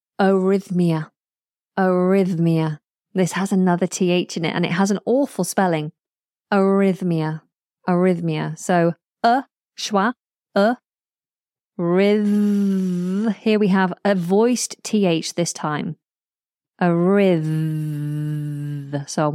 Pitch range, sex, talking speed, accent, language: 170-225 Hz, female, 105 wpm, British, English